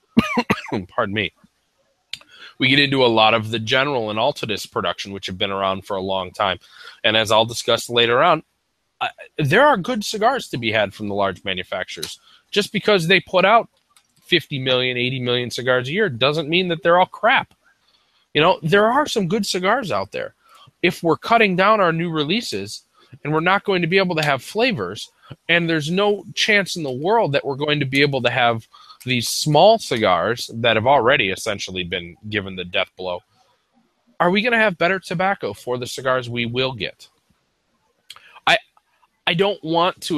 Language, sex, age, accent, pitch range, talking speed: English, male, 20-39, American, 115-175 Hz, 190 wpm